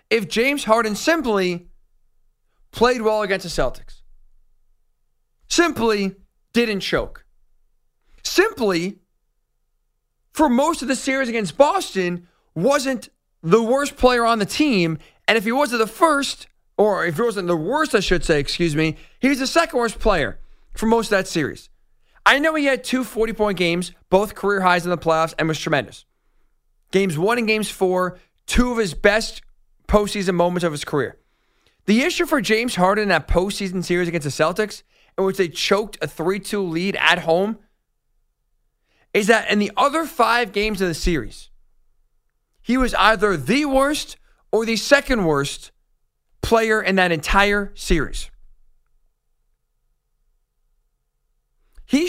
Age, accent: 40-59, American